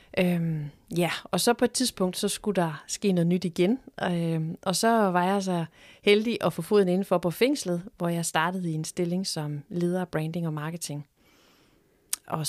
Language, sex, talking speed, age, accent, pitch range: Danish, female, 185 wpm, 30-49, native, 165-200 Hz